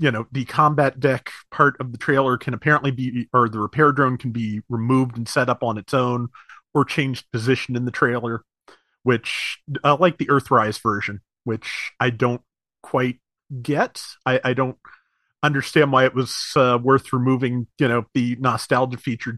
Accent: American